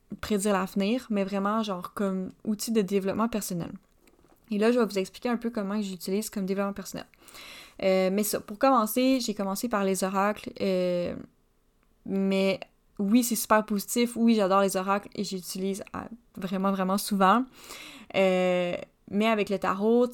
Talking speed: 160 wpm